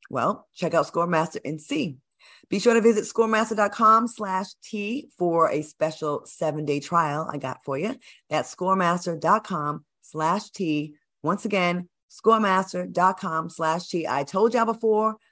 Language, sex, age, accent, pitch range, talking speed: English, female, 30-49, American, 160-215 Hz, 135 wpm